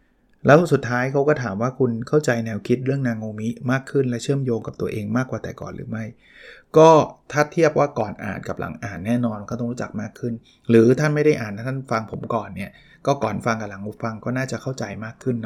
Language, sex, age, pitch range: Thai, male, 20-39, 115-135 Hz